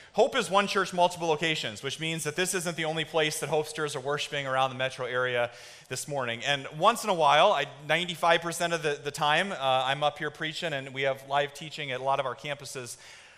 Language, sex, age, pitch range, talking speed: English, male, 30-49, 140-180 Hz, 230 wpm